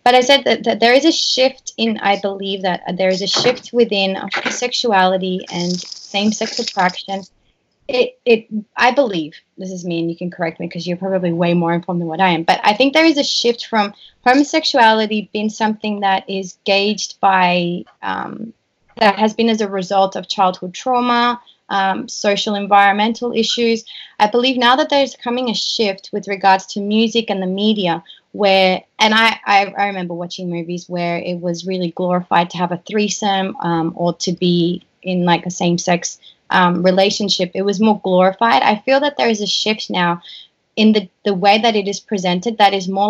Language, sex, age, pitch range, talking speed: English, female, 20-39, 185-225 Hz, 190 wpm